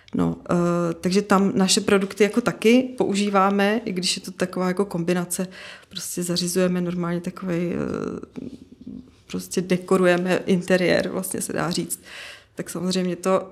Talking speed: 130 wpm